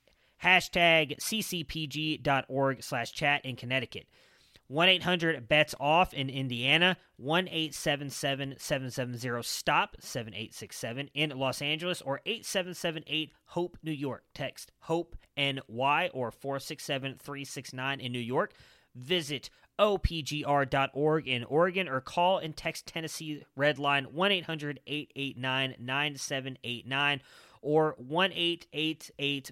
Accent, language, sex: American, English, male